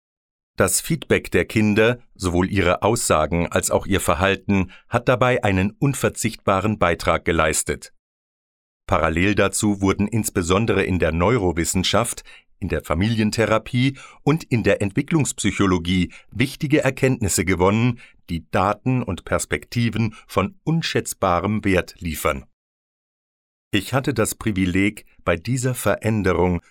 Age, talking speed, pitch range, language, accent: 50-69, 110 wpm, 90-115 Hz, German, German